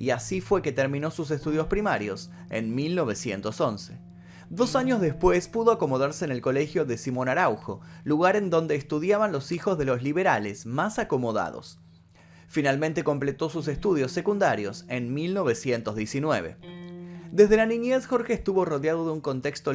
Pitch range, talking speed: 120-180 Hz, 145 wpm